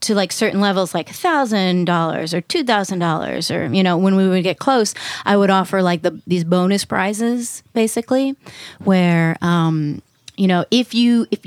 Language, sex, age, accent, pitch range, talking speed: English, female, 30-49, American, 170-205 Hz, 185 wpm